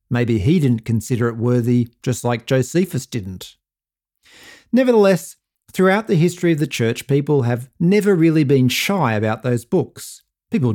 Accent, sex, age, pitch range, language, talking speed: Australian, male, 50-69, 115-145 Hz, English, 150 wpm